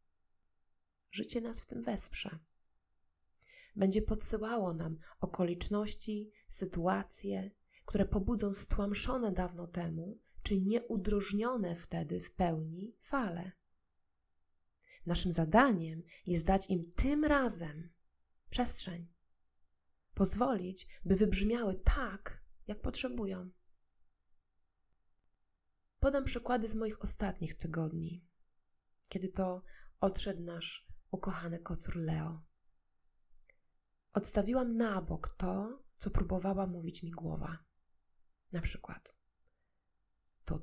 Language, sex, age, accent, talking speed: Polish, female, 20-39, native, 90 wpm